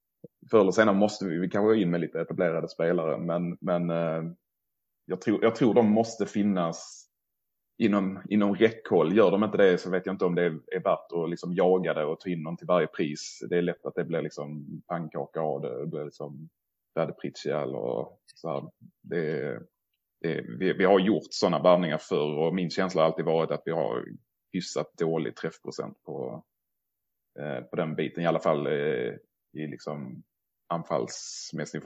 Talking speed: 185 wpm